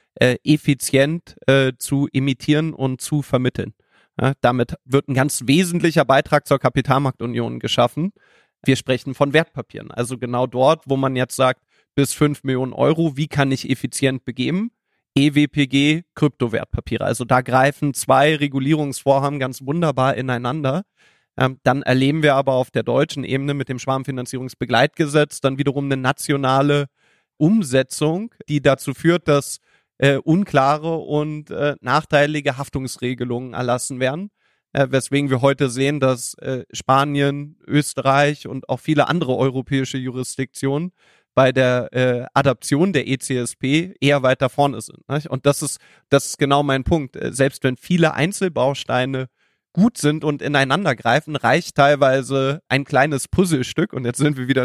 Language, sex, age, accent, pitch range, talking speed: English, male, 30-49, German, 130-150 Hz, 145 wpm